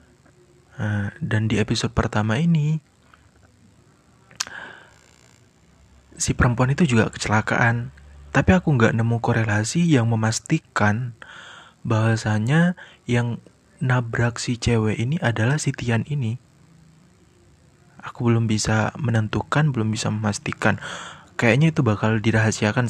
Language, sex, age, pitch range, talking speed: Indonesian, male, 20-39, 110-140 Hz, 100 wpm